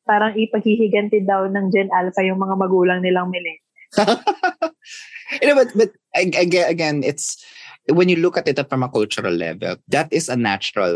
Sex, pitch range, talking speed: male, 110-170 Hz, 170 wpm